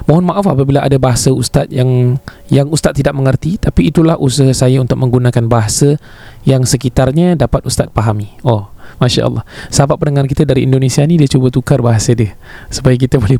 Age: 20-39